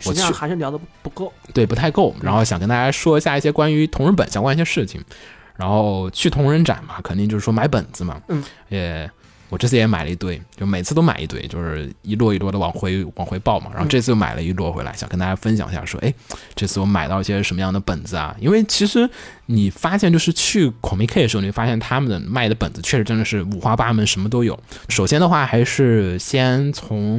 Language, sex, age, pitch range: Chinese, male, 20-39, 100-135 Hz